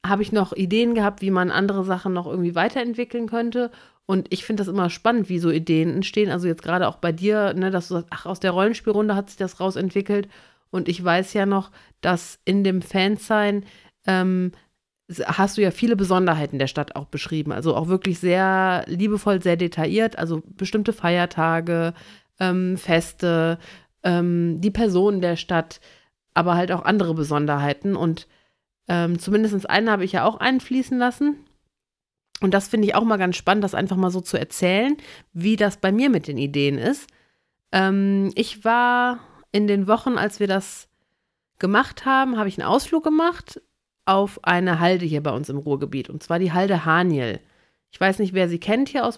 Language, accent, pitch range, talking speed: German, German, 175-215 Hz, 180 wpm